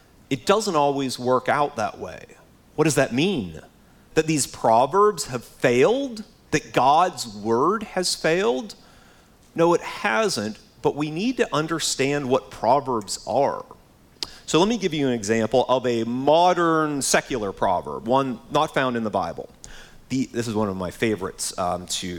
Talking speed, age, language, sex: 155 wpm, 30-49, English, male